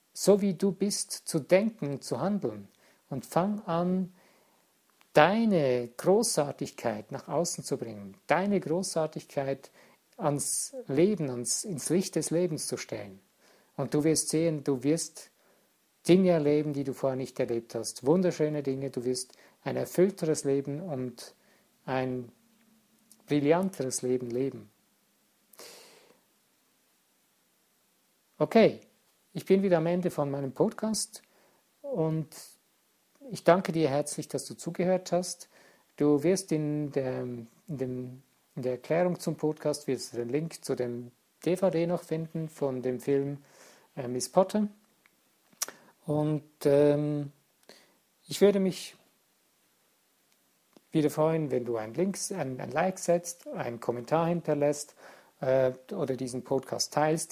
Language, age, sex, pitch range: German, 50-69, male, 135-180 Hz